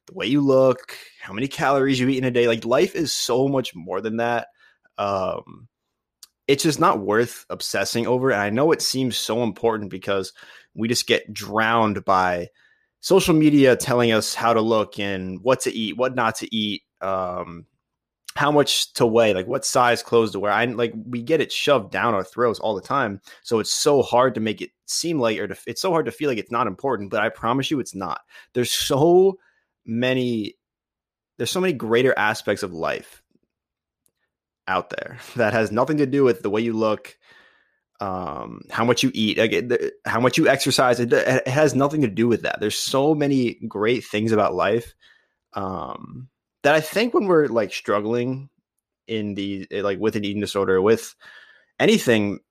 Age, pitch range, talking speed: 20-39, 105-130 Hz, 190 wpm